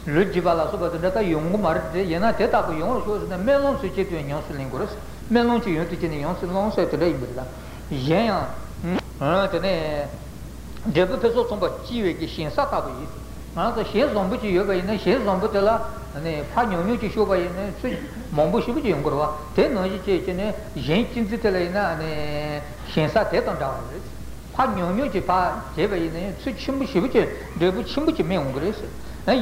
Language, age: Italian, 60-79